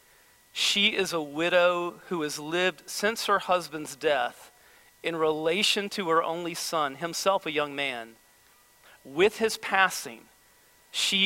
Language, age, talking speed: English, 40-59, 135 wpm